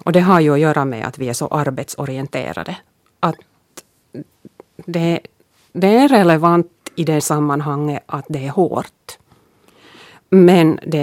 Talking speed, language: 140 wpm, Finnish